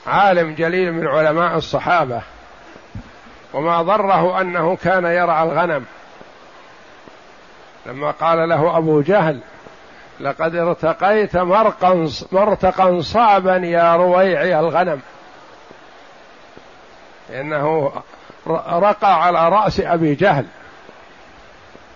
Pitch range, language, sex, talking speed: 155-185 Hz, Arabic, male, 80 wpm